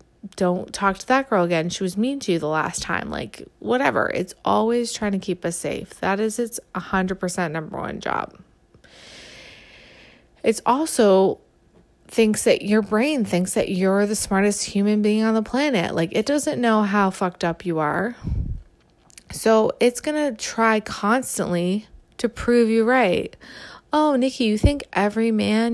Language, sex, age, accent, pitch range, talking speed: English, female, 20-39, American, 185-235 Hz, 170 wpm